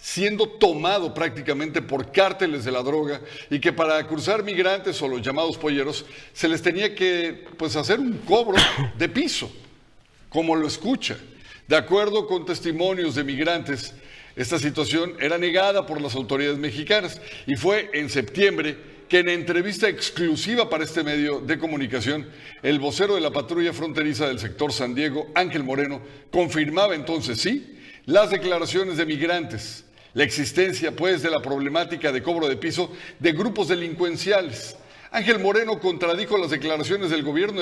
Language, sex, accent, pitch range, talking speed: Spanish, male, Mexican, 150-190 Hz, 150 wpm